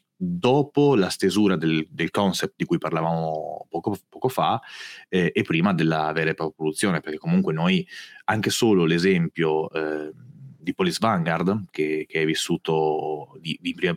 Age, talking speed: 30-49, 155 wpm